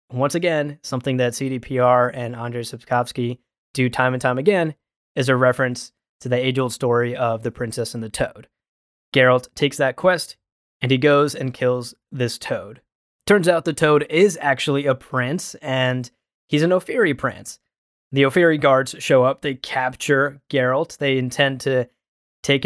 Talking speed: 165 wpm